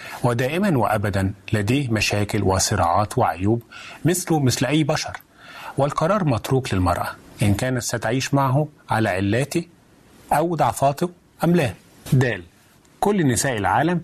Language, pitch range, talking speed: Arabic, 100-130 Hz, 115 wpm